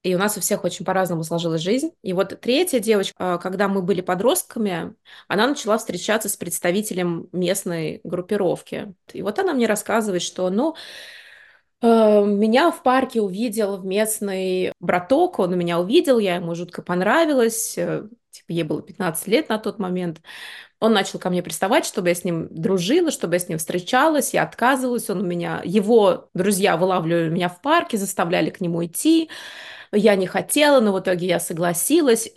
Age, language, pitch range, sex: 20-39, Russian, 180-225 Hz, female